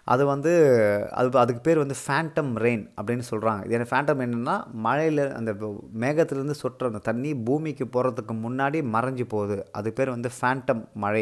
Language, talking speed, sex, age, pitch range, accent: Tamil, 155 wpm, male, 30-49, 110-135 Hz, native